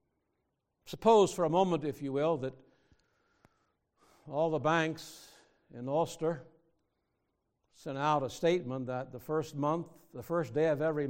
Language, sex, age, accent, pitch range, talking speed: English, male, 60-79, American, 135-170 Hz, 140 wpm